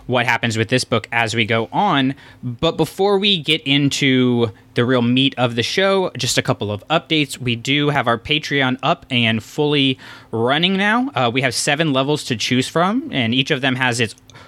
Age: 20-39